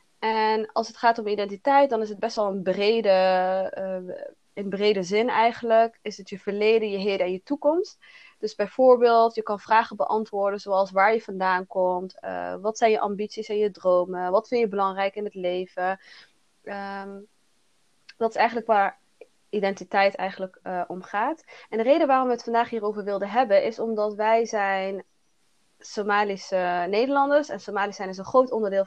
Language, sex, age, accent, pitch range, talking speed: Dutch, female, 20-39, Dutch, 190-230 Hz, 180 wpm